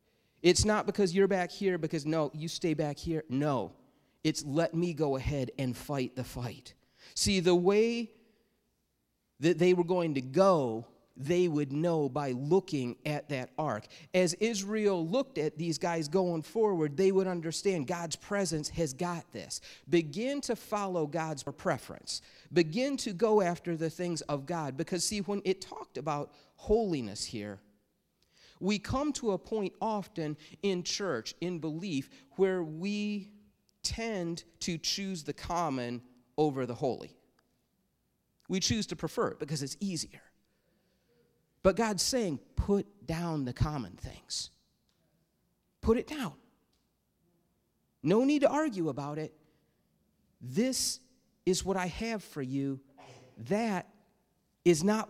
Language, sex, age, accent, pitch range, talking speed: English, male, 40-59, American, 145-195 Hz, 145 wpm